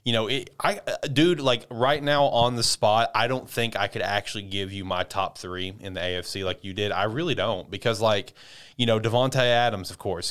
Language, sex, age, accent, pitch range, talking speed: English, male, 20-39, American, 100-120 Hz, 220 wpm